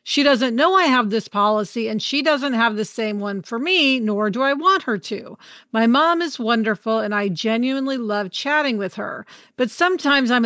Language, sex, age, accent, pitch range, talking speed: English, female, 40-59, American, 215-275 Hz, 205 wpm